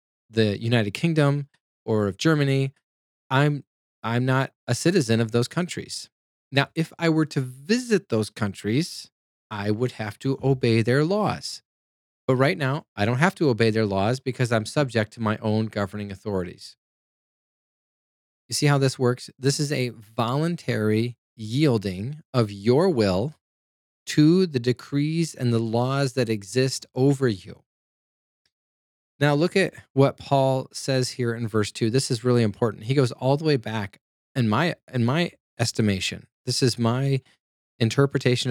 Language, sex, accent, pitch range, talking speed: English, male, American, 110-140 Hz, 155 wpm